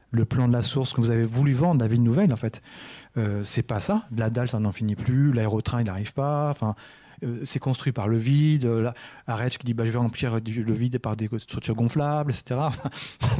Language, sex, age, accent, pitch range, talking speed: French, male, 30-49, French, 115-140 Hz, 235 wpm